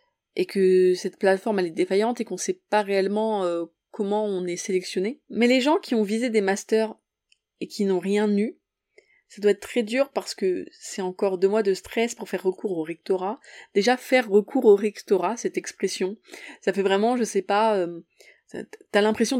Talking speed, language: 205 wpm, French